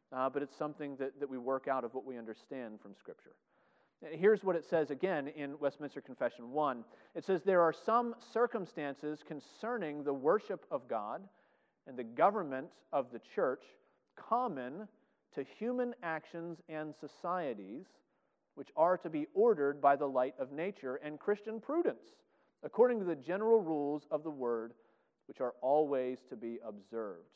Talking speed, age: 160 wpm, 40-59